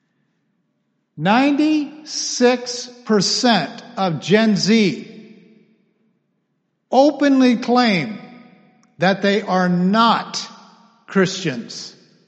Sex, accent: male, American